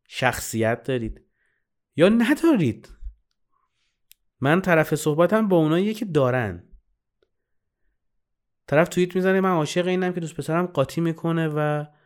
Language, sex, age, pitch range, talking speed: Persian, male, 30-49, 110-165 Hz, 115 wpm